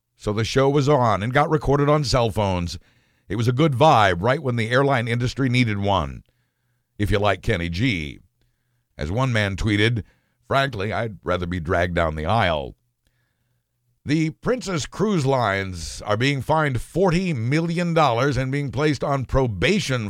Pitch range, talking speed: 115-145 Hz, 160 wpm